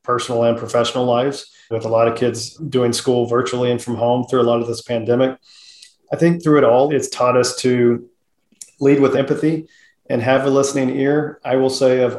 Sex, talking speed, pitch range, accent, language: male, 205 wpm, 120-130 Hz, American, English